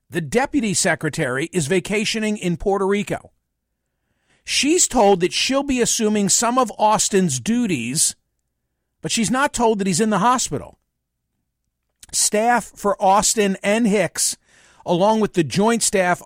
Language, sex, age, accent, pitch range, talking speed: English, male, 50-69, American, 165-215 Hz, 135 wpm